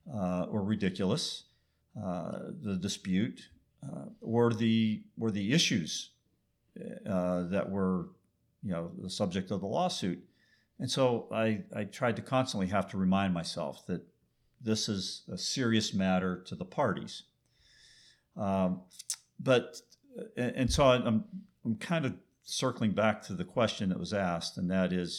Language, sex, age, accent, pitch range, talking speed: English, male, 50-69, American, 90-115 Hz, 145 wpm